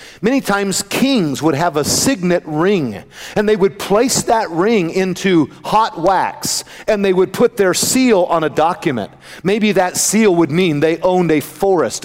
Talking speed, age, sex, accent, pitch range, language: 175 wpm, 50-69, male, American, 155-215 Hz, English